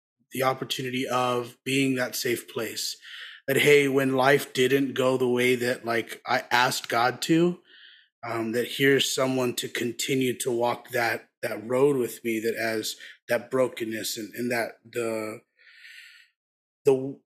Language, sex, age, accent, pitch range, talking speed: English, male, 30-49, American, 120-140 Hz, 150 wpm